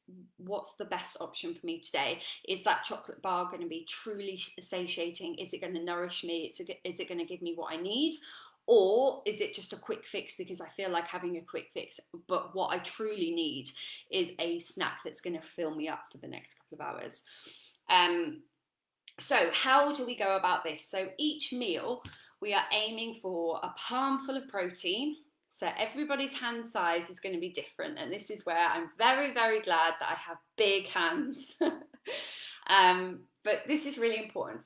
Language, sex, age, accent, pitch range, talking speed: English, female, 20-39, British, 175-280 Hz, 195 wpm